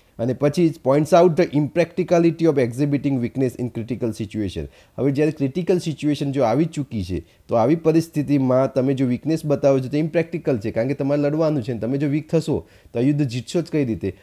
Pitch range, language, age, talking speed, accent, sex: 120-150 Hz, Gujarati, 30-49, 190 wpm, native, male